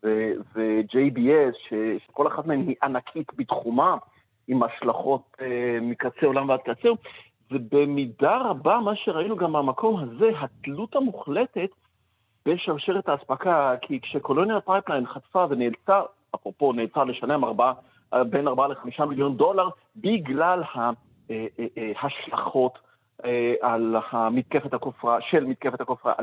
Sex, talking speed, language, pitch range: male, 110 wpm, Hebrew, 120-165 Hz